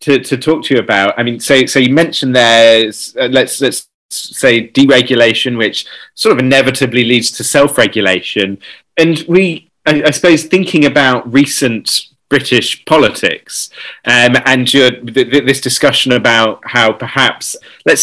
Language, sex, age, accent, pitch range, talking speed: English, male, 30-49, British, 115-140 Hz, 155 wpm